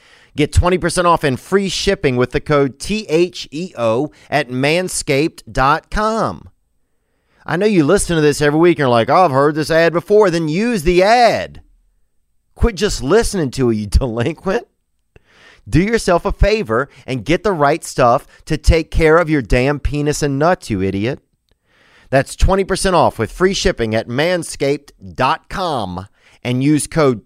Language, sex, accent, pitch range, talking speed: English, male, American, 115-165 Hz, 155 wpm